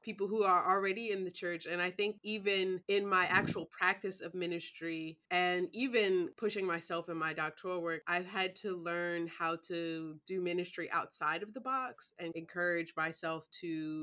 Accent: American